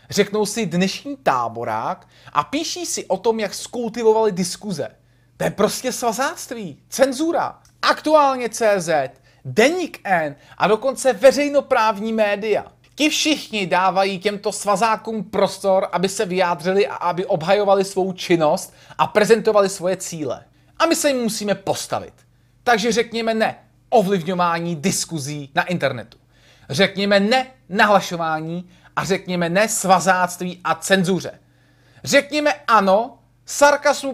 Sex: male